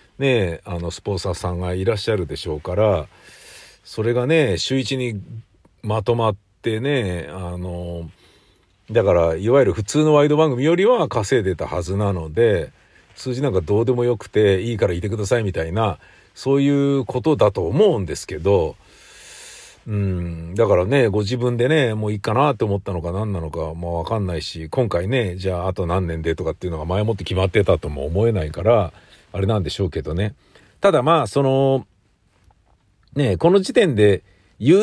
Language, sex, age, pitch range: Japanese, male, 50-69, 90-125 Hz